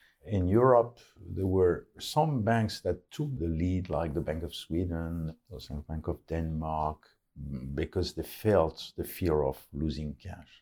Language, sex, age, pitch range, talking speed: English, male, 50-69, 80-100 Hz, 165 wpm